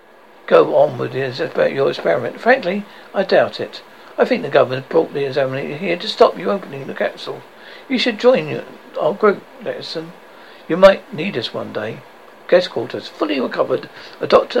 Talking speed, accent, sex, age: 170 wpm, British, male, 60-79